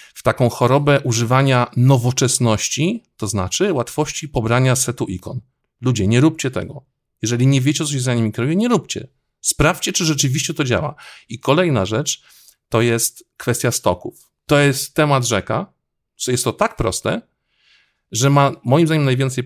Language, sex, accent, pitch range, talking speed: Polish, male, native, 110-140 Hz, 155 wpm